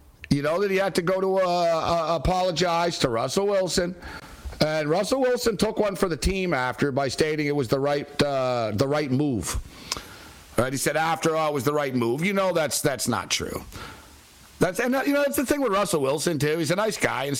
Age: 60-79